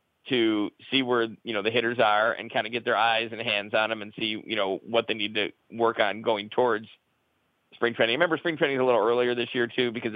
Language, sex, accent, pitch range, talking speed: English, male, American, 110-125 Hz, 260 wpm